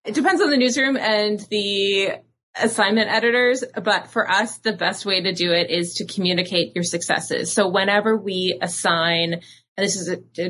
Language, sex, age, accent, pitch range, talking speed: English, female, 20-39, American, 160-195 Hz, 185 wpm